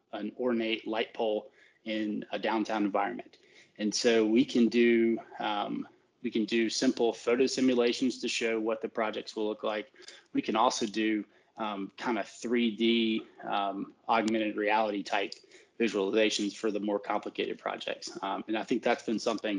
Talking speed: 160 wpm